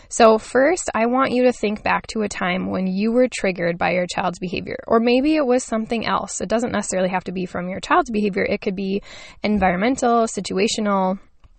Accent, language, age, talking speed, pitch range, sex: American, English, 10-29, 205 wpm, 185-240 Hz, female